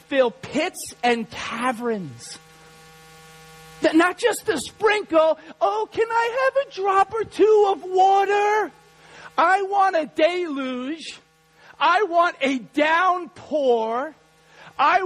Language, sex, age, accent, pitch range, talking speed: English, male, 40-59, American, 245-325 Hz, 110 wpm